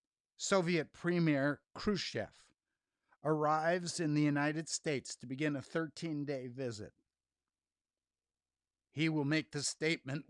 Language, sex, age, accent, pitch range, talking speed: English, male, 60-79, American, 120-160 Hz, 105 wpm